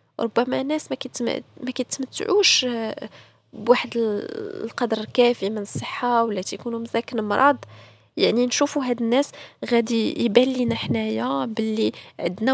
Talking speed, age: 120 wpm, 20-39